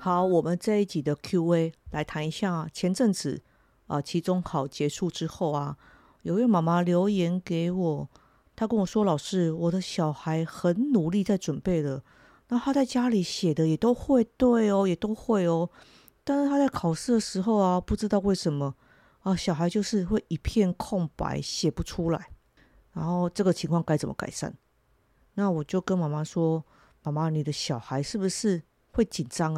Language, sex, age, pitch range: Chinese, female, 50-69, 150-195 Hz